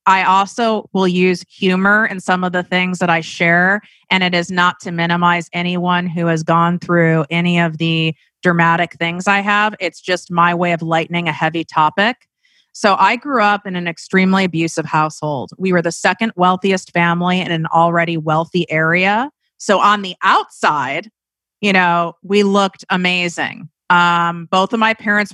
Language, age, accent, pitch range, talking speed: English, 30-49, American, 165-190 Hz, 175 wpm